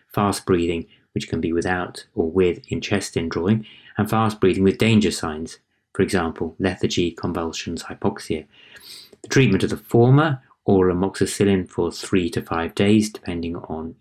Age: 30-49